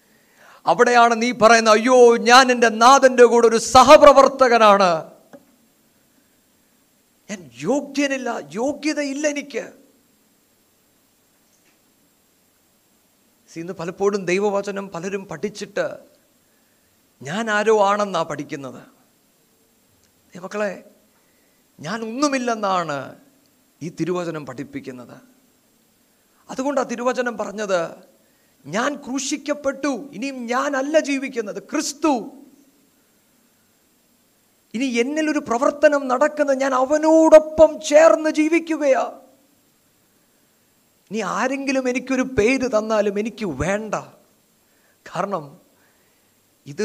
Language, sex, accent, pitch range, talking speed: Malayalam, male, native, 175-270 Hz, 70 wpm